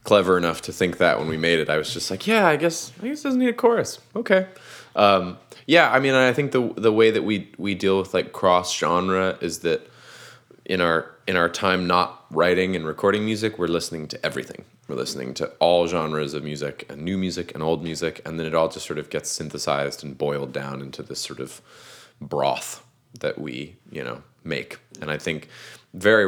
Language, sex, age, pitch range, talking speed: English, male, 20-39, 75-110 Hz, 215 wpm